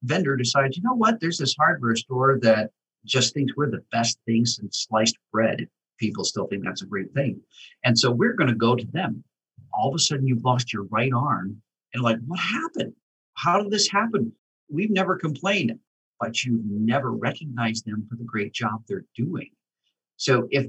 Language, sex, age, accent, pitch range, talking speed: English, male, 50-69, American, 110-150 Hz, 195 wpm